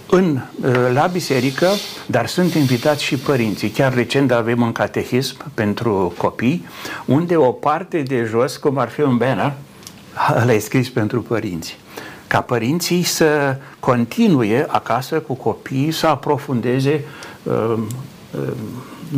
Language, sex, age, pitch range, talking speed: Romanian, male, 60-79, 110-140 Hz, 125 wpm